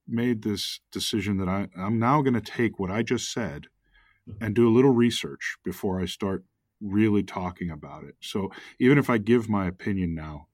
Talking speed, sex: 190 wpm, male